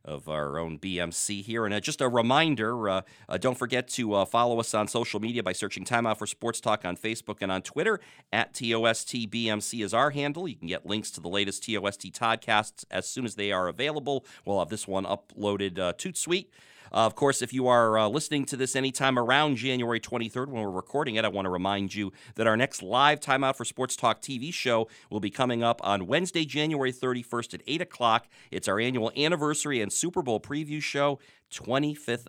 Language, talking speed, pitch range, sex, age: English, 225 wpm, 95-125 Hz, male, 40-59